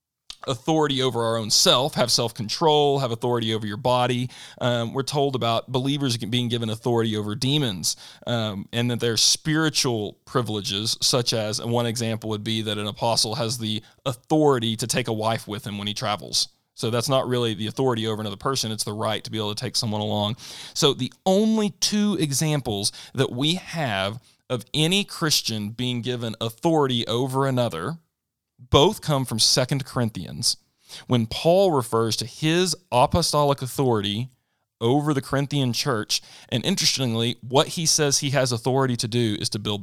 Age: 40-59